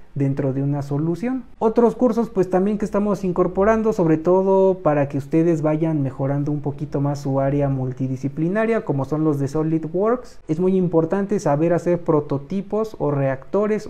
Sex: male